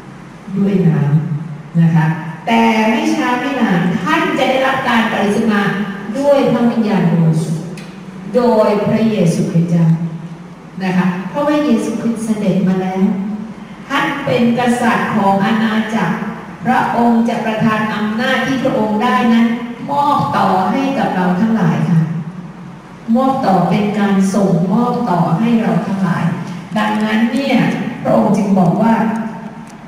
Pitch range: 180-230 Hz